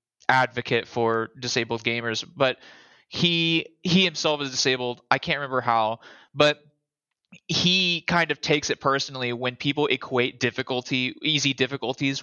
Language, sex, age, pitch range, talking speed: English, male, 20-39, 120-145 Hz, 130 wpm